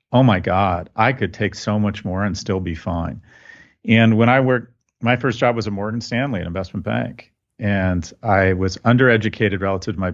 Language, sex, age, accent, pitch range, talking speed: English, male, 40-59, American, 90-115 Hz, 200 wpm